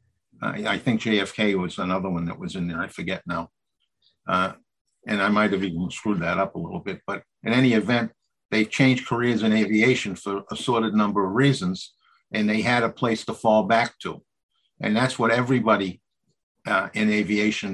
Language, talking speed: English, 185 wpm